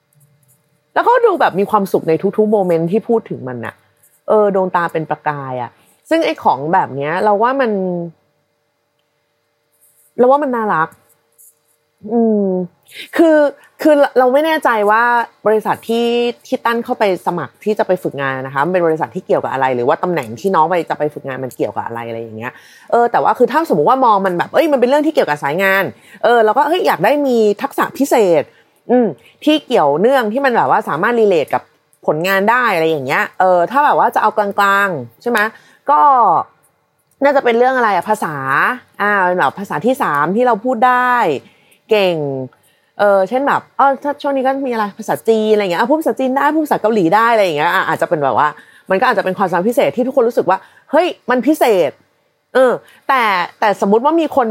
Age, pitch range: 30-49, 165-265 Hz